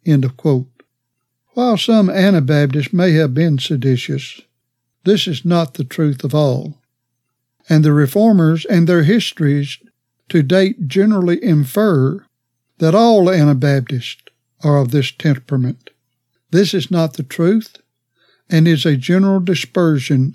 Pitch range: 130-180 Hz